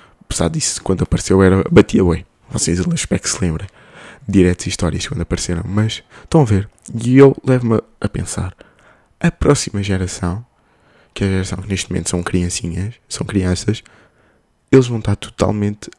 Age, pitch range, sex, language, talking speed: 20-39, 95-125 Hz, male, Portuguese, 165 wpm